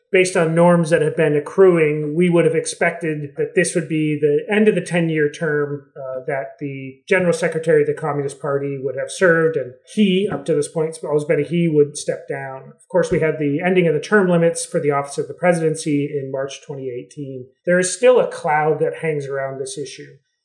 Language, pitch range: English, 145-180 Hz